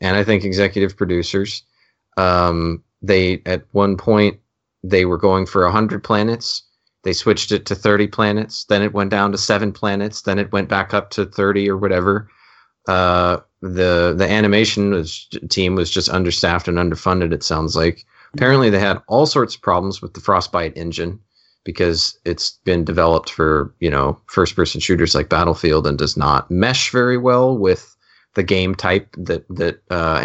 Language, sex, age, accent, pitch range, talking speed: English, male, 30-49, American, 85-105 Hz, 170 wpm